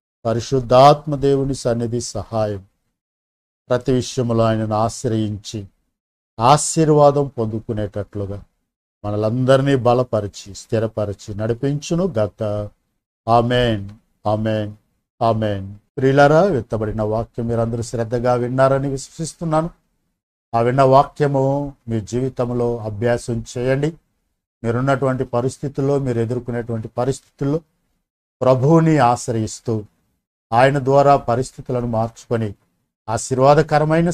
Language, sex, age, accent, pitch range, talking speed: Telugu, male, 50-69, native, 105-135 Hz, 75 wpm